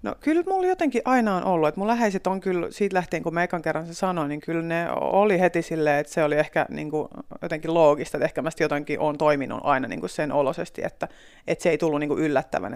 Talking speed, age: 225 wpm, 30-49